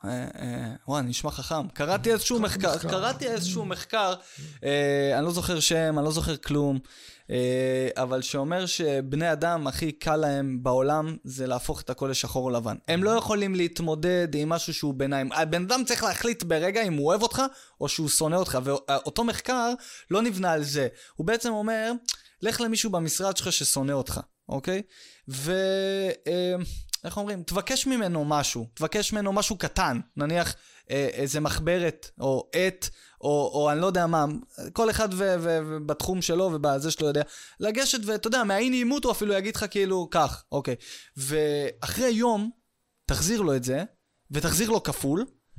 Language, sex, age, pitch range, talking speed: Hebrew, male, 20-39, 140-210 Hz, 160 wpm